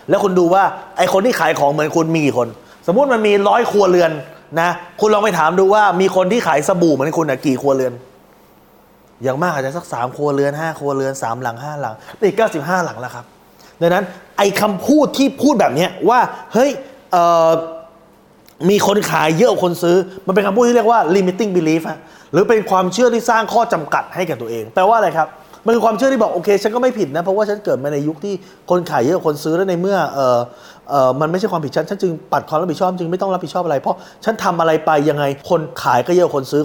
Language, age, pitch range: Thai, 20-39, 145-200 Hz